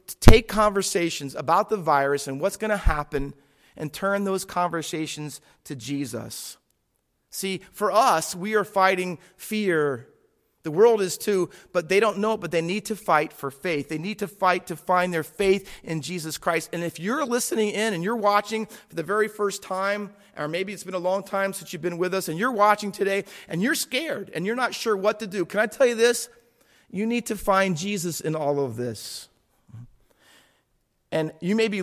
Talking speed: 205 wpm